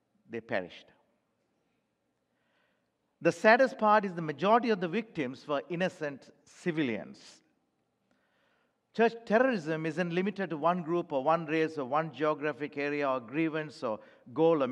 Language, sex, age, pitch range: English, male, 50-69, 155-215 Hz